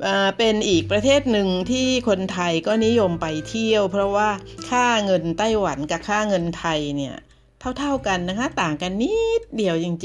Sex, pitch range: female, 170-230 Hz